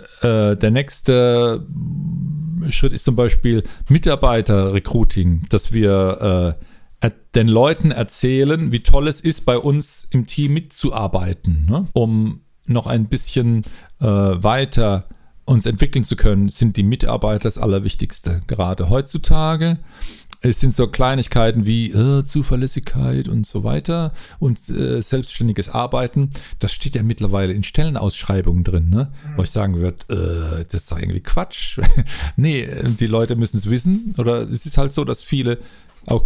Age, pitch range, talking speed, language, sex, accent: 40-59, 105-140 Hz, 135 wpm, German, male, German